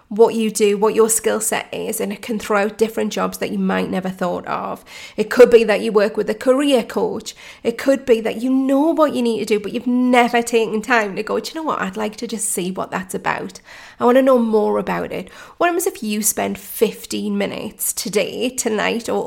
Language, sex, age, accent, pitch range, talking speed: English, female, 30-49, British, 210-240 Hz, 245 wpm